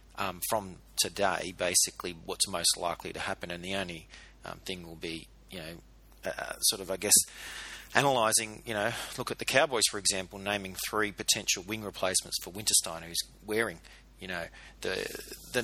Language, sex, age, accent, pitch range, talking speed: English, male, 30-49, Australian, 95-120 Hz, 175 wpm